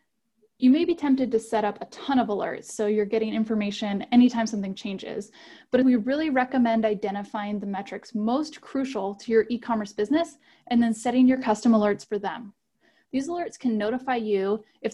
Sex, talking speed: female, 180 wpm